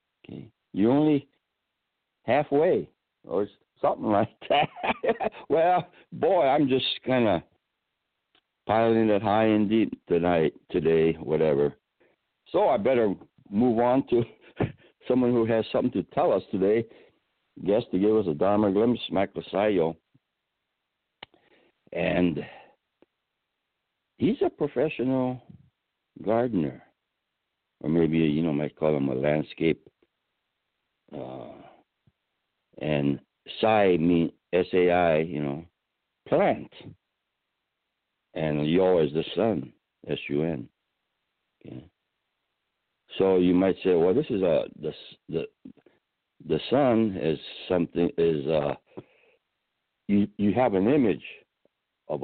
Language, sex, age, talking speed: English, male, 60-79, 115 wpm